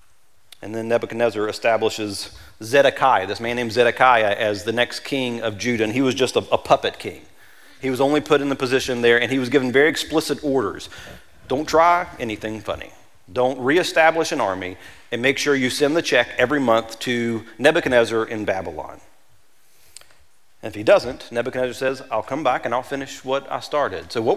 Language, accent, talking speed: English, American, 185 wpm